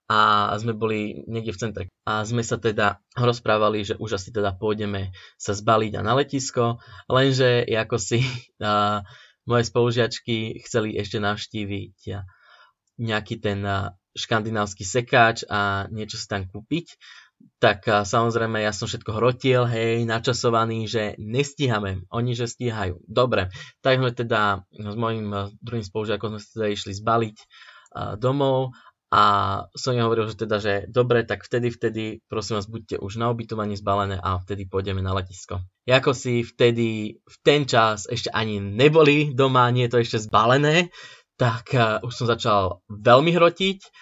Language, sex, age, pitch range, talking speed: Slovak, male, 20-39, 105-125 Hz, 155 wpm